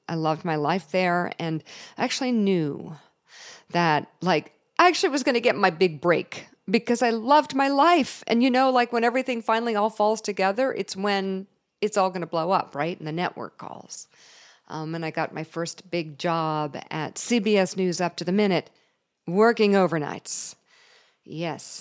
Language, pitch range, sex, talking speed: English, 160-210 Hz, female, 180 wpm